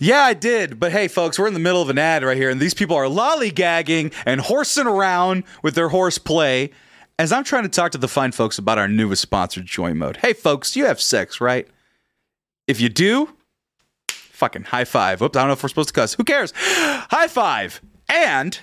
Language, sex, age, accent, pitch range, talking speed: English, male, 30-49, American, 115-170 Hz, 220 wpm